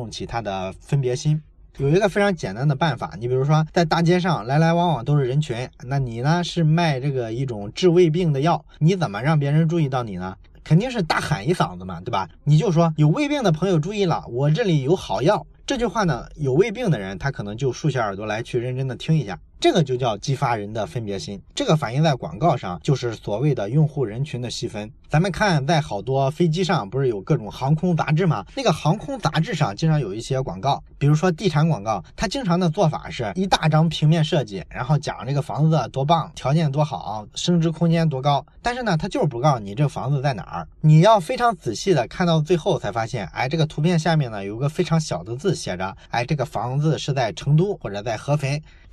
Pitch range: 130-170 Hz